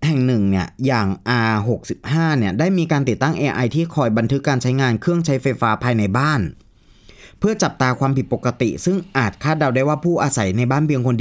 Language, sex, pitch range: Thai, male, 110-145 Hz